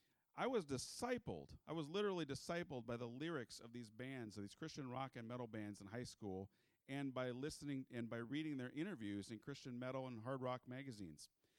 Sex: male